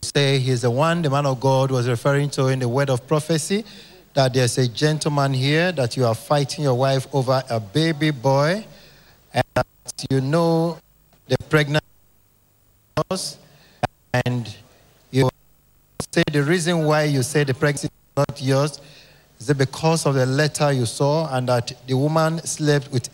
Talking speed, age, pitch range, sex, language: 170 wpm, 50-69, 130-155 Hz, male, English